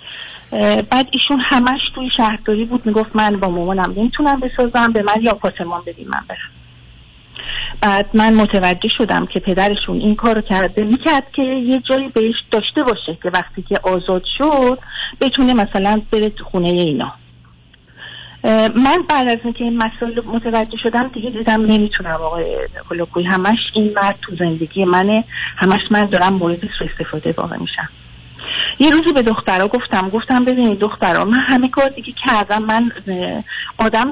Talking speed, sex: 150 wpm, female